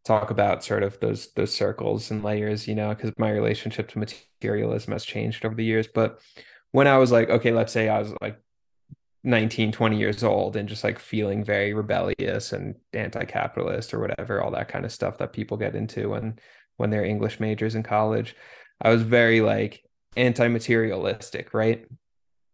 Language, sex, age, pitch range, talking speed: English, male, 20-39, 110-125 Hz, 180 wpm